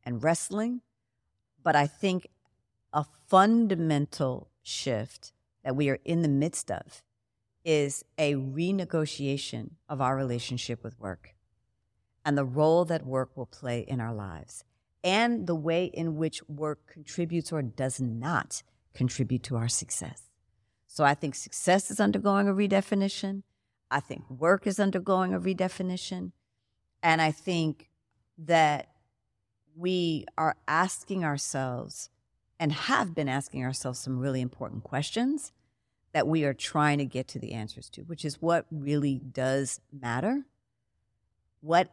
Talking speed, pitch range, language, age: 135 wpm, 125-170 Hz, English, 50-69